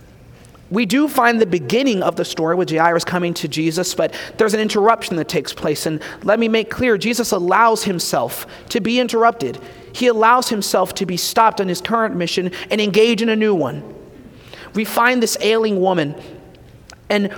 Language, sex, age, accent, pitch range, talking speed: English, male, 30-49, American, 180-235 Hz, 185 wpm